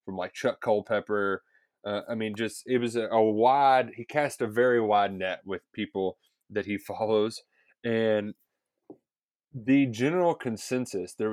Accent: American